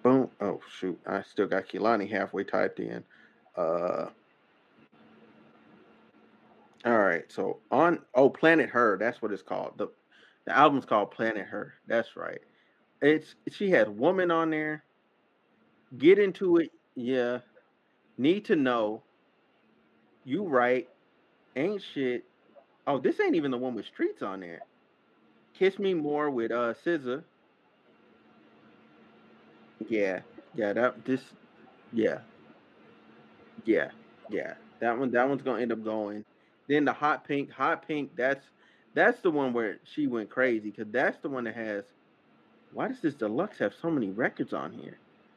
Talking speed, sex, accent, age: 145 wpm, male, American, 30-49